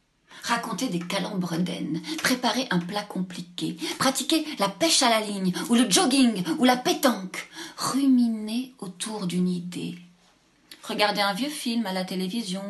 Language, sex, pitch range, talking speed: French, female, 175-205 Hz, 145 wpm